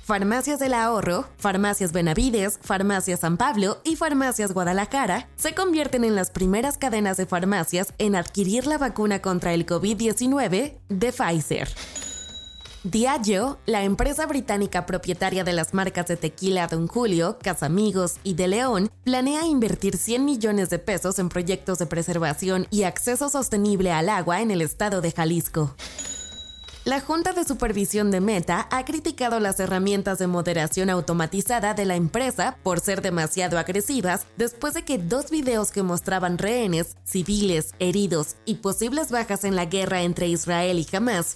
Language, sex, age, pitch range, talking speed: Spanish, female, 20-39, 175-235 Hz, 150 wpm